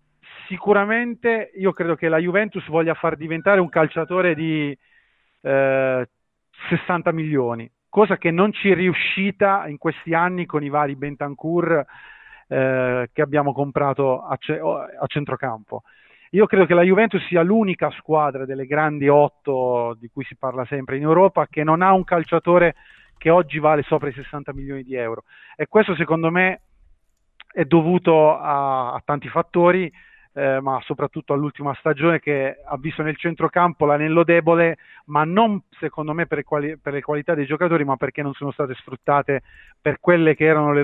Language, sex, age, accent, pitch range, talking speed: Italian, male, 40-59, native, 140-175 Hz, 165 wpm